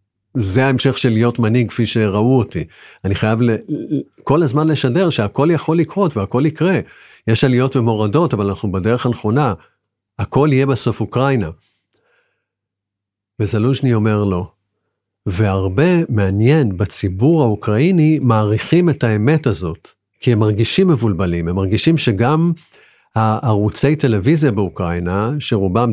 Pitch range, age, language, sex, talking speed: 100-140 Hz, 50-69, Hebrew, male, 120 wpm